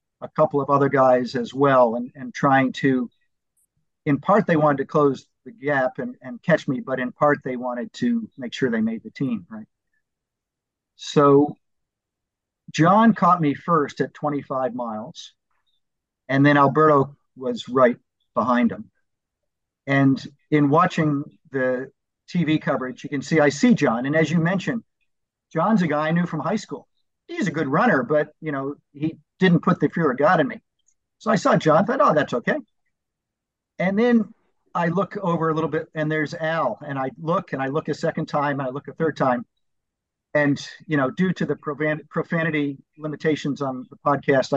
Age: 50-69